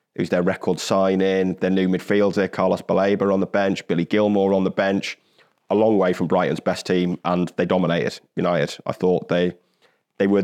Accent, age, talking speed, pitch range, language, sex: British, 30-49, 195 wpm, 90-95 Hz, English, male